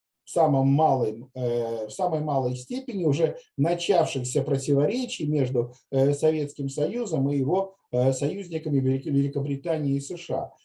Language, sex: Russian, male